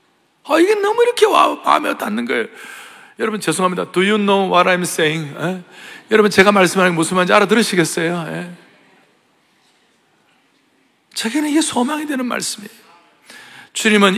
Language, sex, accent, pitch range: Korean, male, native, 155-240 Hz